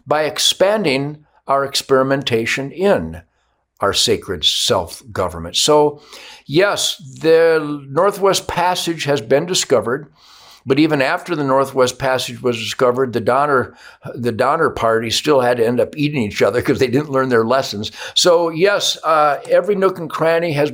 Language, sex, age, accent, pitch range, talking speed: English, male, 60-79, American, 120-150 Hz, 150 wpm